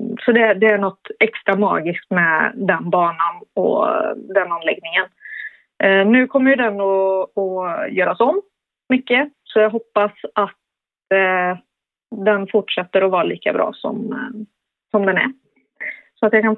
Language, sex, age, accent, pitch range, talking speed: Swedish, female, 30-49, native, 205-245 Hz, 150 wpm